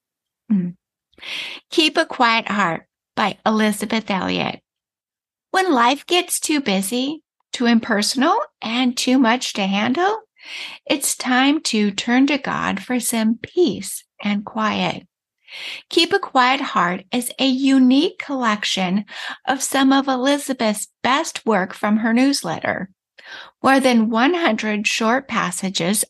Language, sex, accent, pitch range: English, female, American, 200-270 Hz